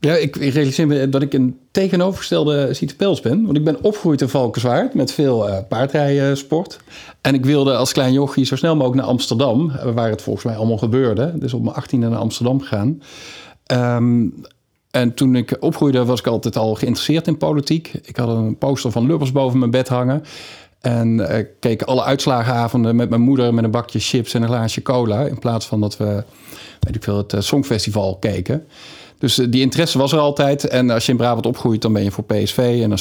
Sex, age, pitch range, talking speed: male, 50-69, 115-140 Hz, 210 wpm